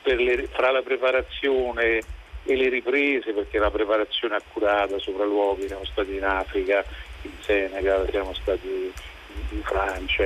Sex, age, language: male, 50-69, Italian